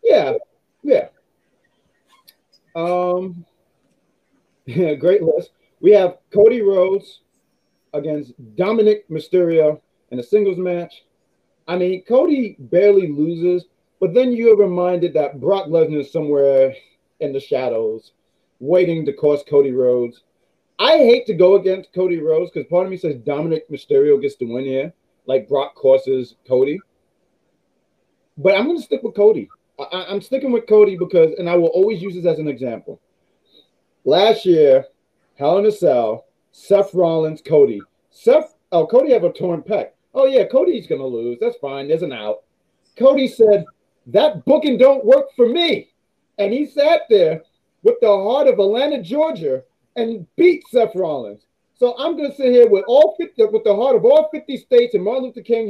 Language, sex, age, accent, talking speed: English, male, 40-59, American, 160 wpm